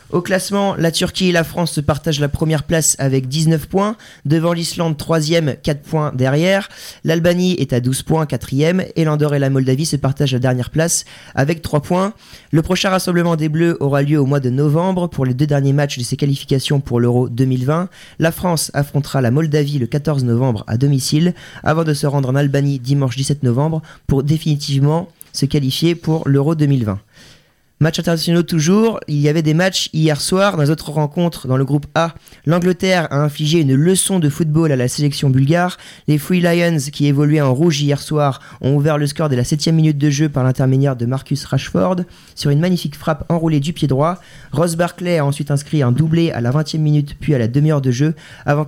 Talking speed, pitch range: 205 wpm, 140-165 Hz